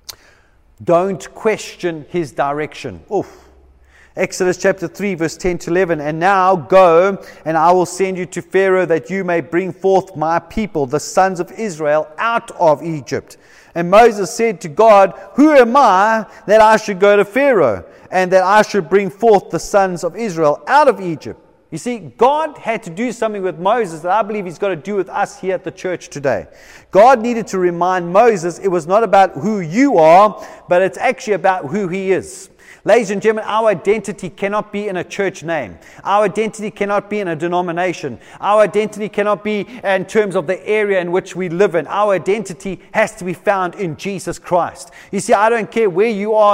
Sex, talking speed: male, 195 wpm